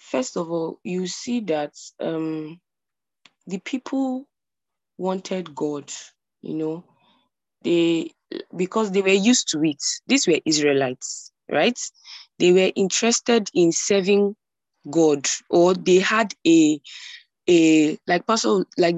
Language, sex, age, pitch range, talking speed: English, female, 20-39, 160-220 Hz, 120 wpm